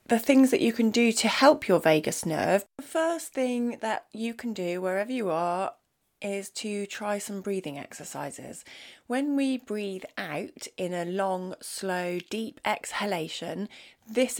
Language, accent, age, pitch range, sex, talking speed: English, British, 30-49, 180-225 Hz, female, 155 wpm